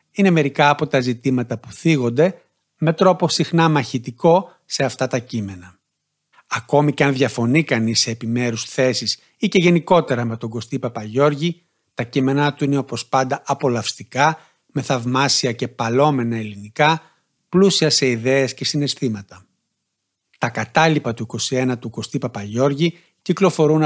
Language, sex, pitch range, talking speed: Greek, male, 120-155 Hz, 140 wpm